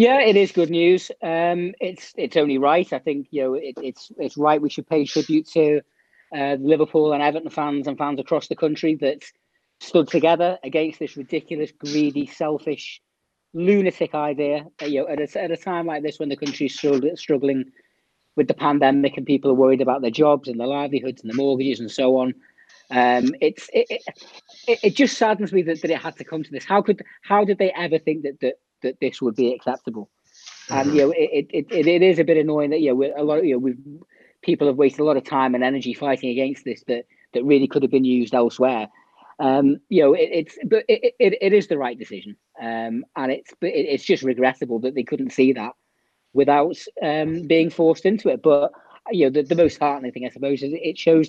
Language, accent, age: English, British, 40-59